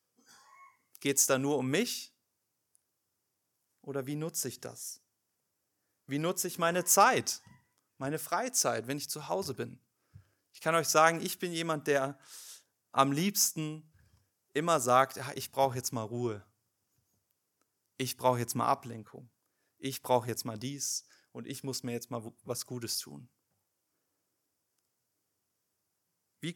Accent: German